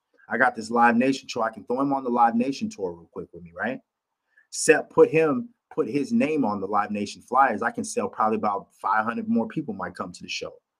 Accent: American